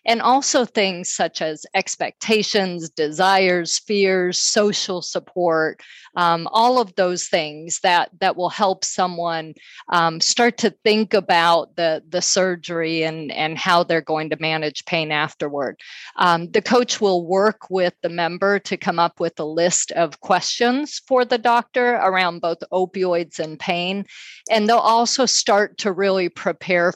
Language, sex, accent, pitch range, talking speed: English, female, American, 165-205 Hz, 150 wpm